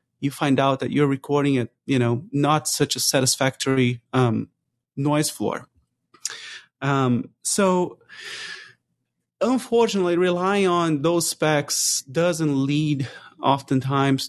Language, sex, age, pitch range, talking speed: English, male, 30-49, 125-155 Hz, 110 wpm